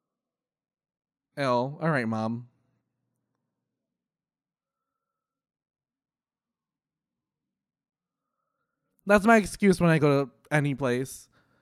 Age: 20-39